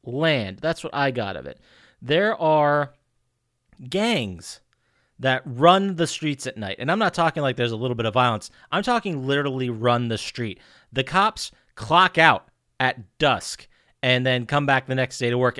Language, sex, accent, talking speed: English, male, American, 185 wpm